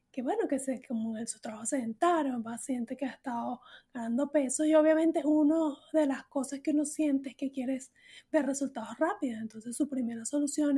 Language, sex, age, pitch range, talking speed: Spanish, female, 30-49, 250-300 Hz, 200 wpm